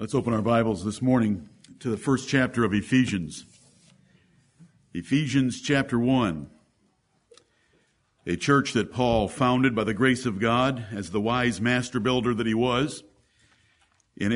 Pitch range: 115-140 Hz